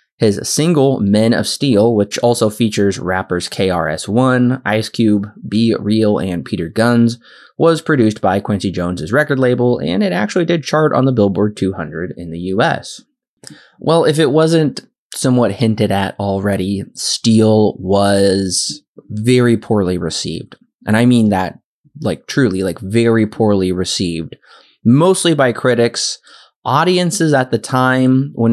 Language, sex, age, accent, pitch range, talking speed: English, male, 20-39, American, 100-130 Hz, 140 wpm